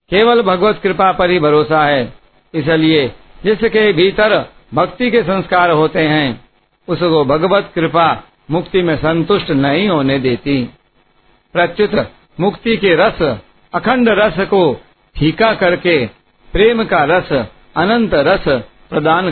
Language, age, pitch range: Hindi, 60-79, 145-200 Hz